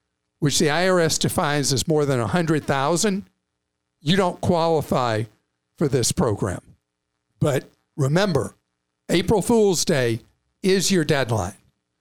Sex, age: male, 50-69